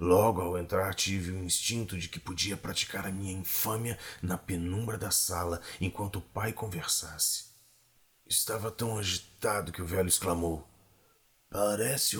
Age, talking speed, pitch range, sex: 40-59, 145 wpm, 85-100 Hz, male